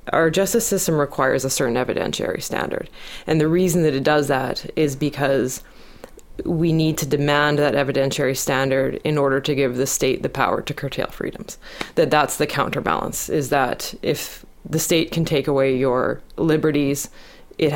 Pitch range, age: 140-170 Hz, 20-39